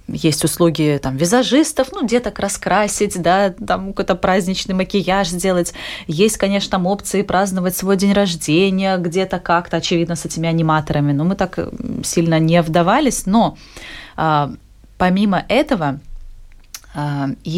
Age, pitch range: 20-39, 165-200 Hz